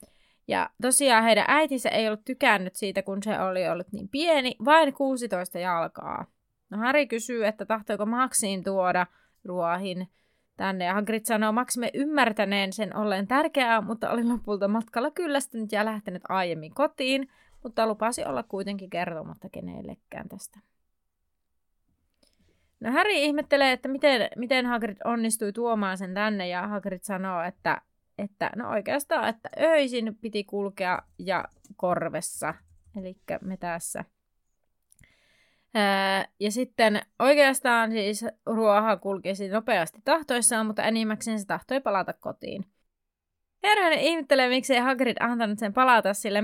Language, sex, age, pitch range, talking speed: Finnish, female, 20-39, 195-250 Hz, 130 wpm